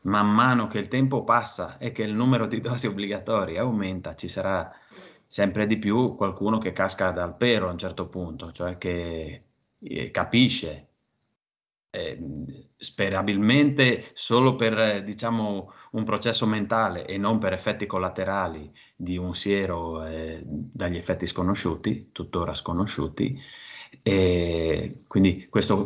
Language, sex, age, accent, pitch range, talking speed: Italian, male, 30-49, native, 90-110 Hz, 130 wpm